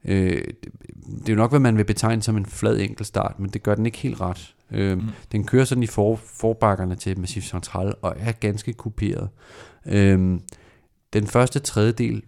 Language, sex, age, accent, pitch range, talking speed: Danish, male, 30-49, native, 100-120 Hz, 165 wpm